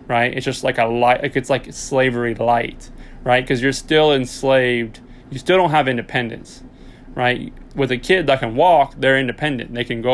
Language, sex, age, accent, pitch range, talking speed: English, male, 20-39, American, 120-135 Hz, 190 wpm